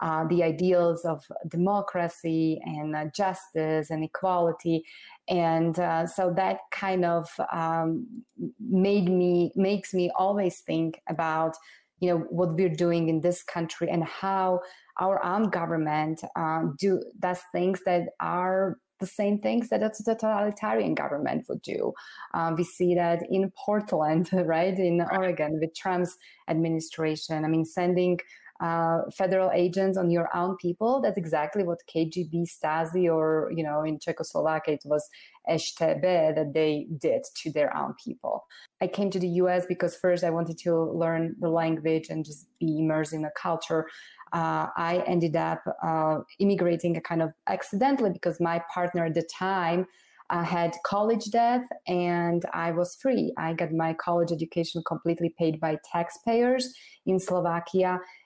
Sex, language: female, English